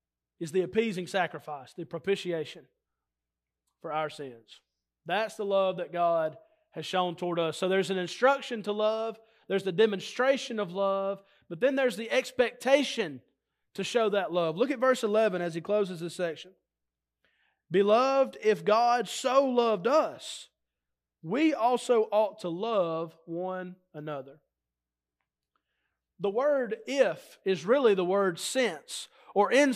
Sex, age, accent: male, 30-49, American